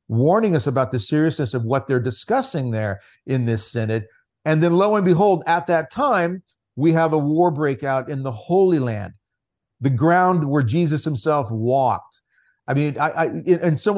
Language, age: English, 50-69